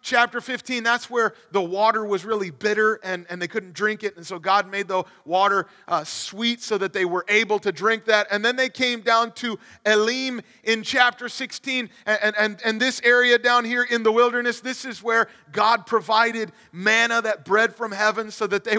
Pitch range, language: 195-240 Hz, English